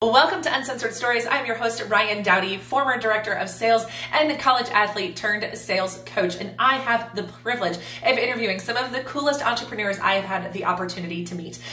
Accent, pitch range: American, 195-255 Hz